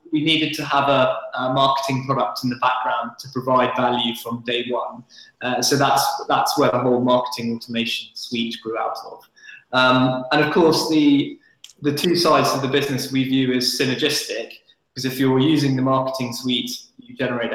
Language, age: English, 20-39